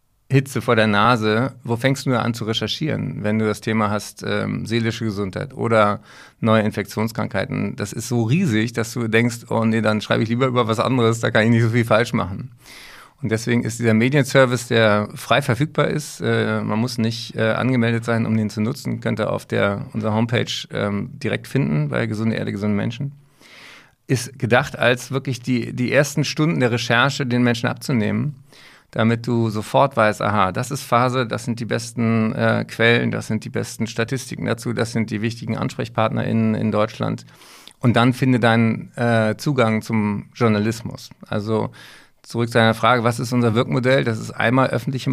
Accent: German